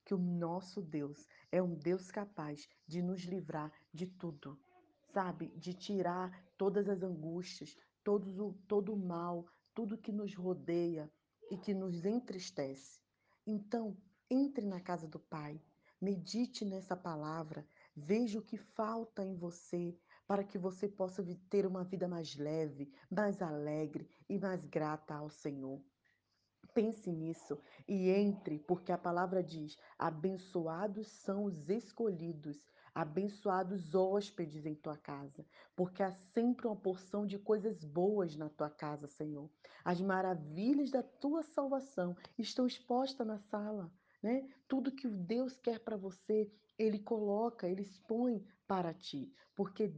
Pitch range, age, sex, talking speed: 165-210 Hz, 20-39, female, 135 wpm